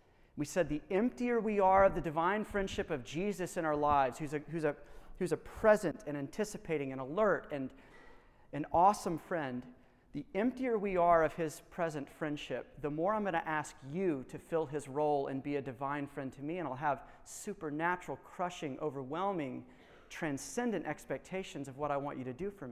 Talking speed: 190 wpm